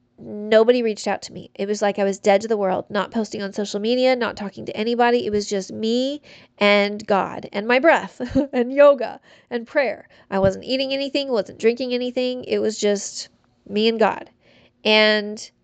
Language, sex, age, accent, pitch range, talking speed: English, female, 30-49, American, 205-255 Hz, 190 wpm